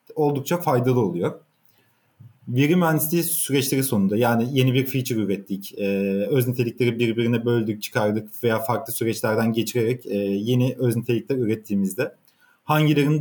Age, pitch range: 30-49, 110-140 Hz